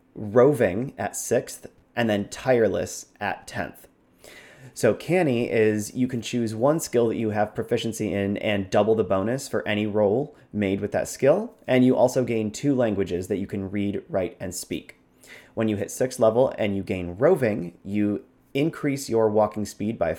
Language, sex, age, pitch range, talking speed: English, male, 30-49, 100-120 Hz, 180 wpm